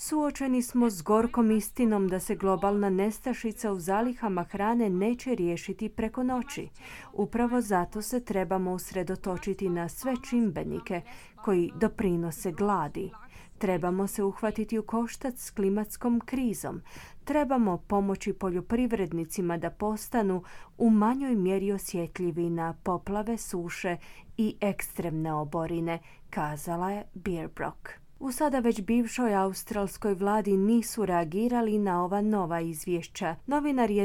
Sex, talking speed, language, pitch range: female, 115 wpm, Croatian, 180-230 Hz